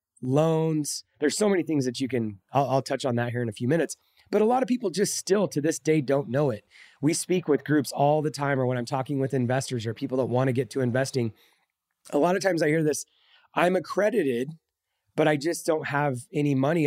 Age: 30-49